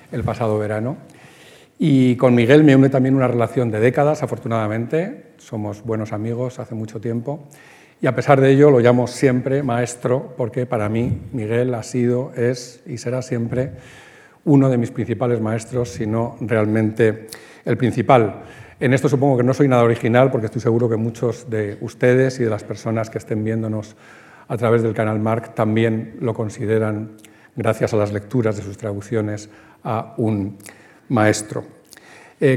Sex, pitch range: male, 115-135 Hz